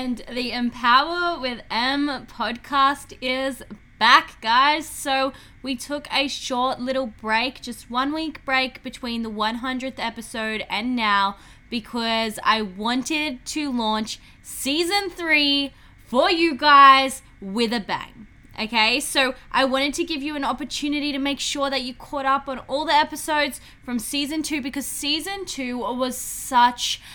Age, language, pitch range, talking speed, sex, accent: 10-29, English, 225-290 Hz, 150 wpm, female, Australian